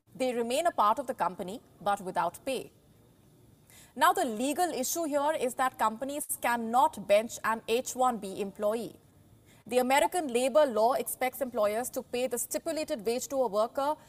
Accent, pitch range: Indian, 215-275 Hz